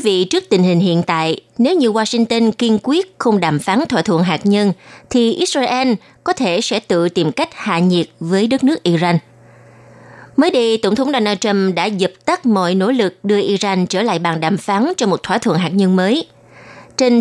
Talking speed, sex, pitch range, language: 210 wpm, female, 180-245 Hz, Vietnamese